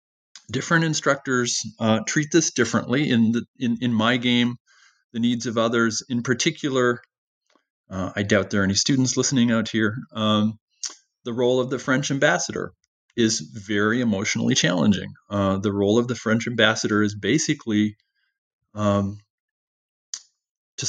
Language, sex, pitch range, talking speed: English, male, 110-130 Hz, 145 wpm